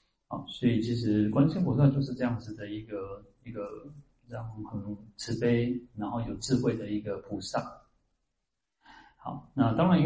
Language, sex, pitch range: Chinese, male, 105-130 Hz